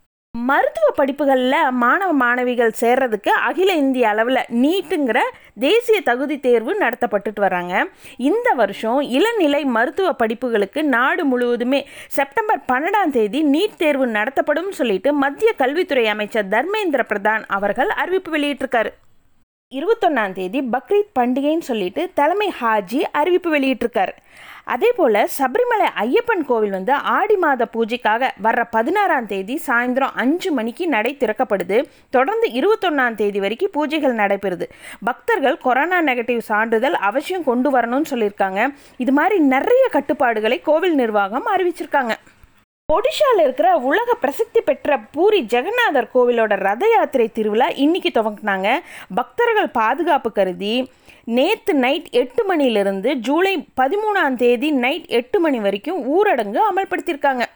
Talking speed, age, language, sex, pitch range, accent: 115 wpm, 30-49, Tamil, female, 235-350 Hz, native